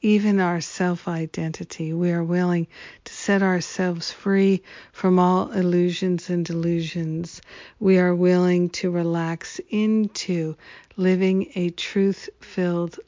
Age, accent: 50-69, American